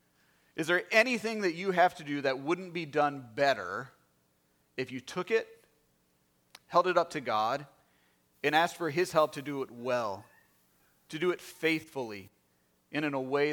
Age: 30-49